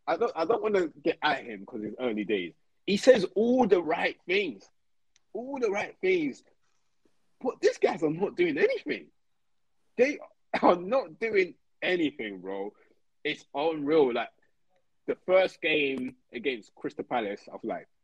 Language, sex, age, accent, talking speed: English, male, 20-39, British, 160 wpm